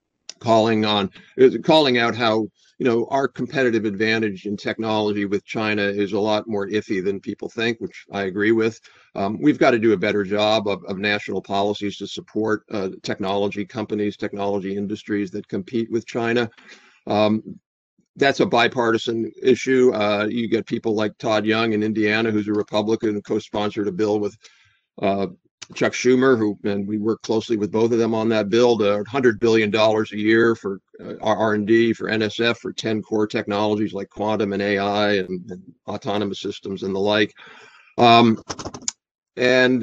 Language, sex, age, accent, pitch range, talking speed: English, male, 50-69, American, 105-115 Hz, 170 wpm